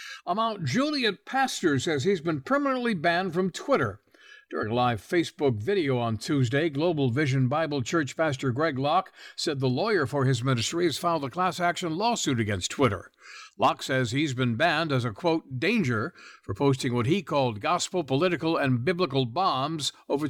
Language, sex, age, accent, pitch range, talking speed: English, male, 60-79, American, 125-170 Hz, 175 wpm